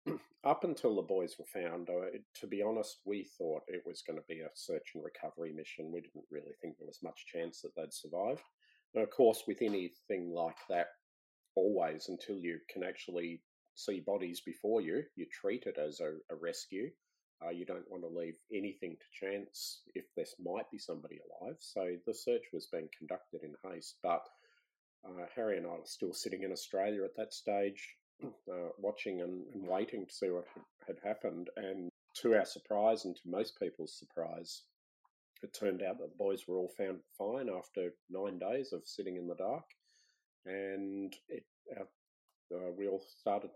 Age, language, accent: 40-59, English, Australian